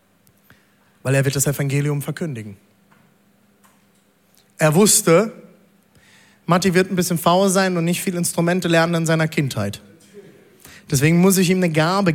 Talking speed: 140 wpm